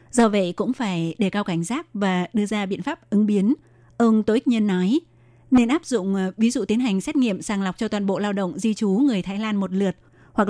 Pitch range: 185-230 Hz